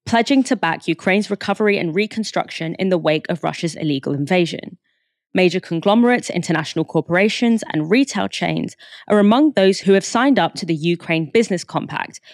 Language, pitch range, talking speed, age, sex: English, 160-205 Hz, 160 wpm, 20-39, female